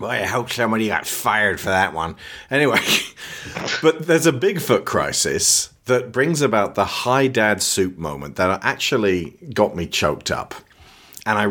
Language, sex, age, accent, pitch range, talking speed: English, male, 40-59, British, 95-120 Hz, 160 wpm